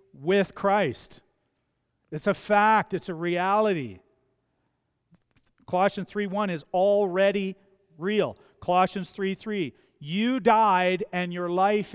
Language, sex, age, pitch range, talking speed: English, male, 40-59, 130-190 Hz, 110 wpm